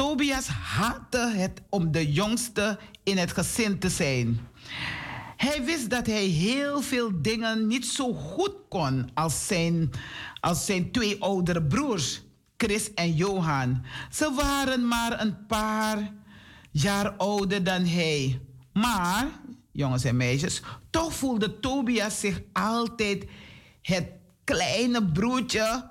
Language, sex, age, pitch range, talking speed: Dutch, male, 50-69, 155-225 Hz, 120 wpm